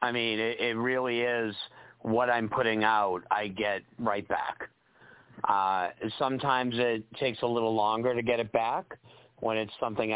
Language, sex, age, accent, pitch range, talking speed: English, male, 50-69, American, 105-125 Hz, 165 wpm